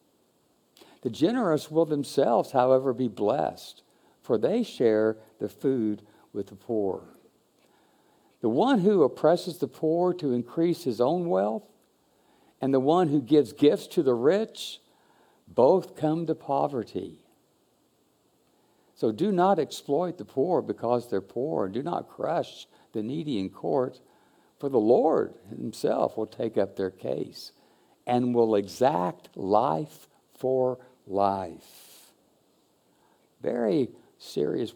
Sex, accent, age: male, American, 60-79